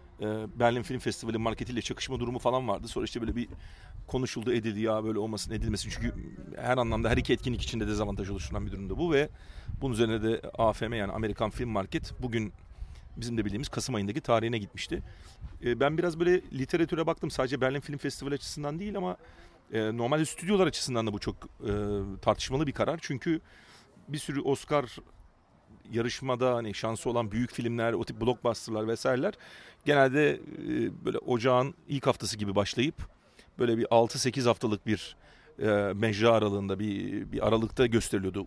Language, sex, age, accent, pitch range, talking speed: Turkish, male, 40-59, native, 100-130 Hz, 155 wpm